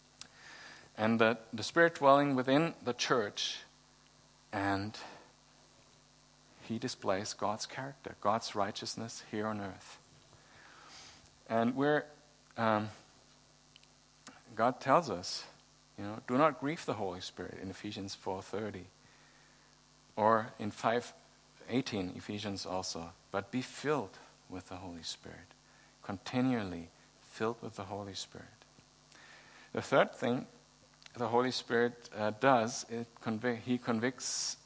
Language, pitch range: English, 95-125 Hz